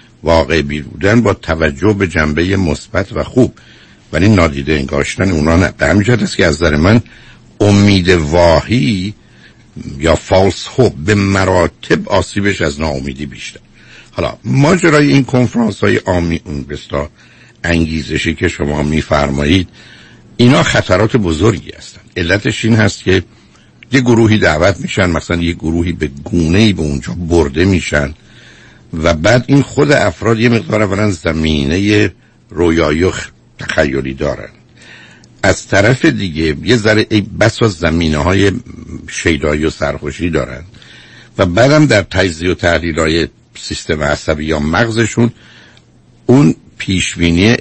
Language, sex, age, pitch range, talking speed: Persian, male, 60-79, 80-105 Hz, 125 wpm